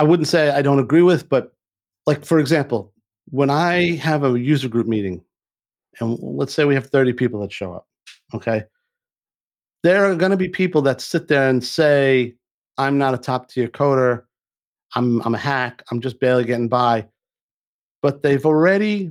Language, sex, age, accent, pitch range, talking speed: English, male, 50-69, American, 125-150 Hz, 180 wpm